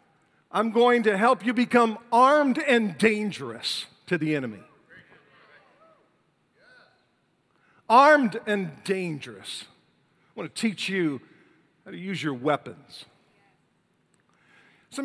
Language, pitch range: English, 135-190 Hz